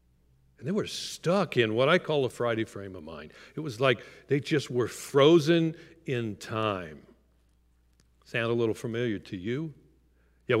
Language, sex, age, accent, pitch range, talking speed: English, male, 50-69, American, 115-145 Hz, 165 wpm